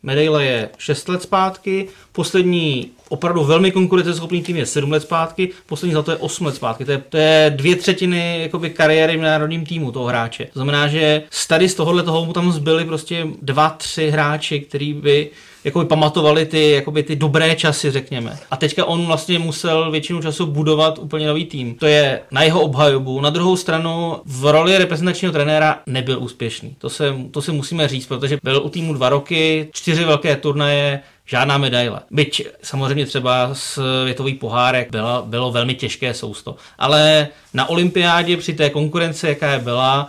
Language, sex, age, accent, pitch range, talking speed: Czech, male, 30-49, native, 140-170 Hz, 175 wpm